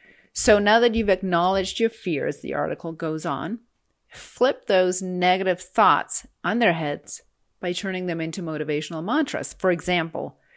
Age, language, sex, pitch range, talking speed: 40-59, English, female, 165-195 Hz, 150 wpm